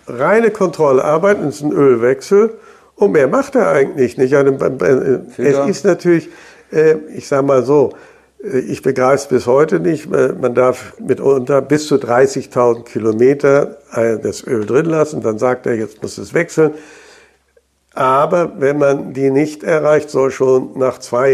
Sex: male